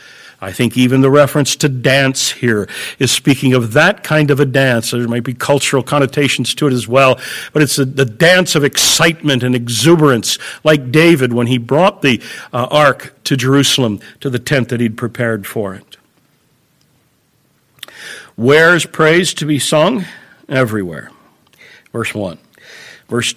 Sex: male